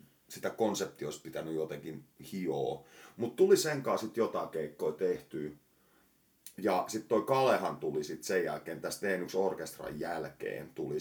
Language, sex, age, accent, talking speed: Finnish, male, 30-49, native, 135 wpm